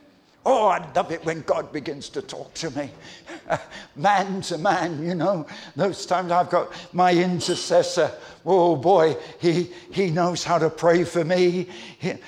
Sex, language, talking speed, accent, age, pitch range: male, English, 165 wpm, British, 60-79, 155-200 Hz